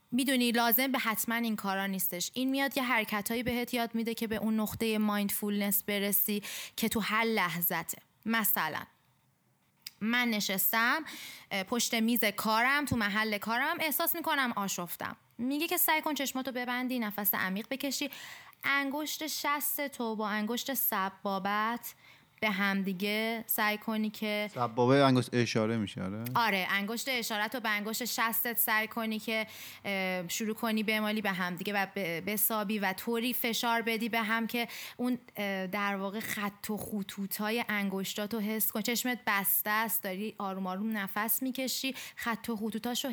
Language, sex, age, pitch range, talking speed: Persian, female, 20-39, 205-235 Hz, 150 wpm